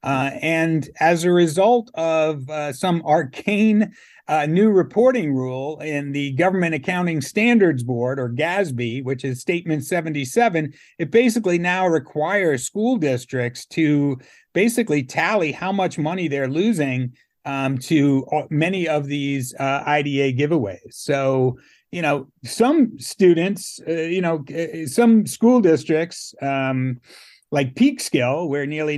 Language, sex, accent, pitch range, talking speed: English, male, American, 140-175 Hz, 135 wpm